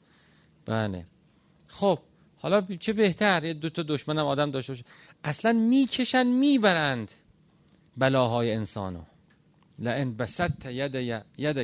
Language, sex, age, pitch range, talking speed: Persian, male, 40-59, 135-195 Hz, 110 wpm